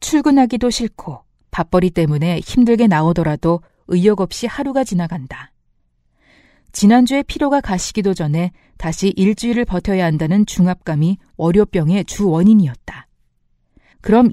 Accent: native